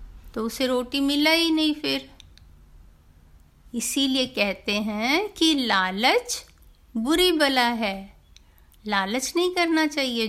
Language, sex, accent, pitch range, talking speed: Hindi, female, native, 195-280 Hz, 110 wpm